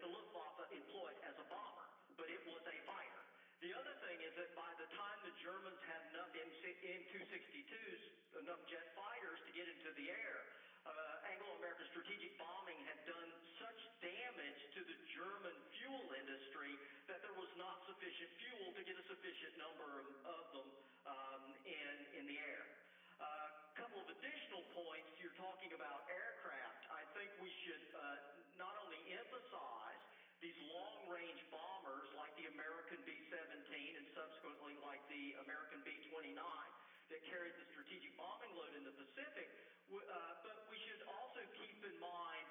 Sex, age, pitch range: male, 50-69, 155-205 Hz